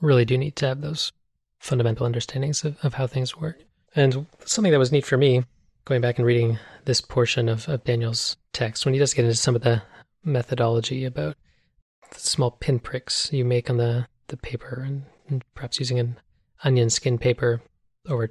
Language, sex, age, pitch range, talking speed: English, male, 30-49, 120-135 Hz, 190 wpm